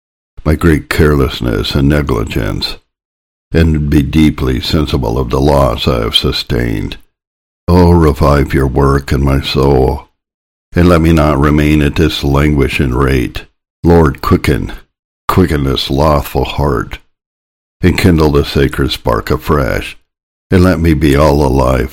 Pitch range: 70-80 Hz